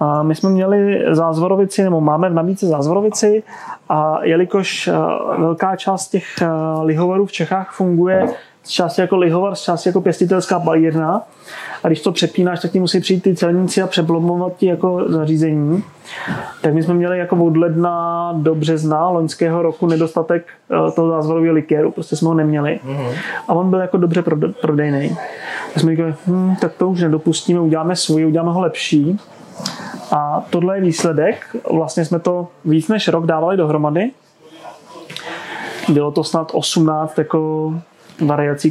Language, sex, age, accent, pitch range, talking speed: Czech, male, 30-49, native, 155-180 Hz, 145 wpm